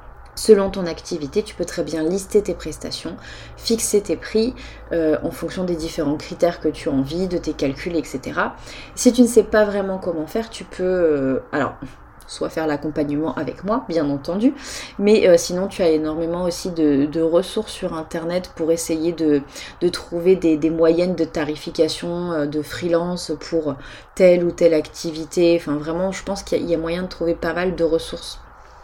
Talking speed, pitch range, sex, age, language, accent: 190 wpm, 155-185 Hz, female, 20-39, French, French